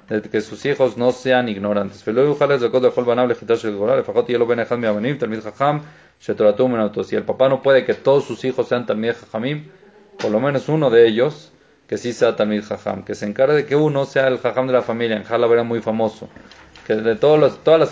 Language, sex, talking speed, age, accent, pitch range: Spanish, male, 175 wpm, 40-59, Mexican, 115-145 Hz